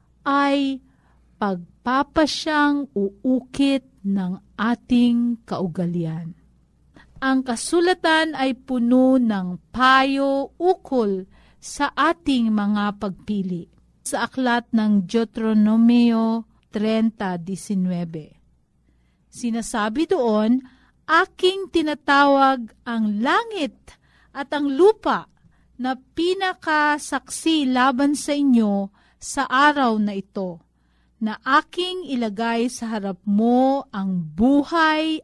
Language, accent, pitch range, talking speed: Filipino, native, 210-280 Hz, 80 wpm